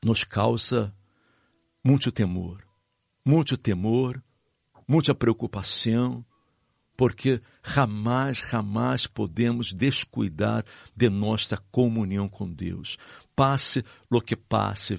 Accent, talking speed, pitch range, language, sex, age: Brazilian, 90 wpm, 105-140 Hz, Spanish, male, 60-79